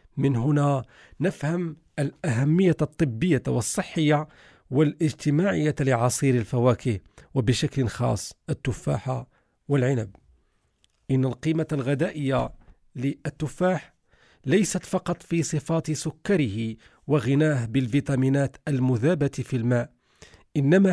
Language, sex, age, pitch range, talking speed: Arabic, male, 40-59, 125-155 Hz, 80 wpm